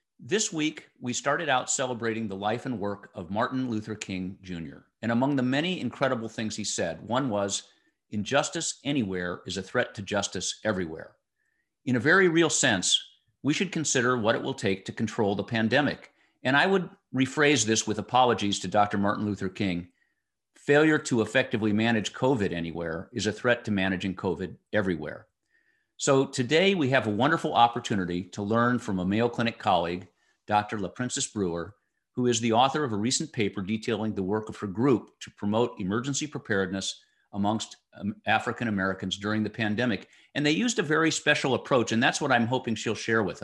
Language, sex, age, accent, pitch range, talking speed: English, male, 50-69, American, 105-130 Hz, 180 wpm